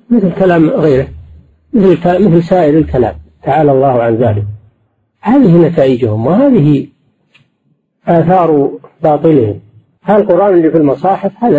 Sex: male